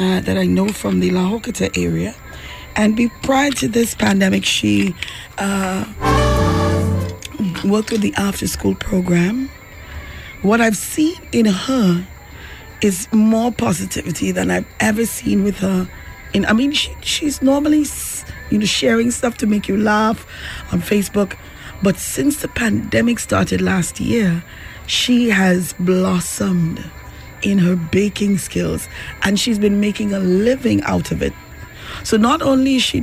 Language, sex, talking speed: English, female, 145 wpm